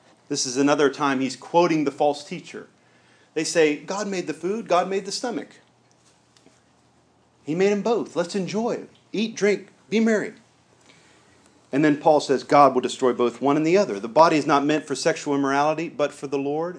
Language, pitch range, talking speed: English, 140-195 Hz, 195 wpm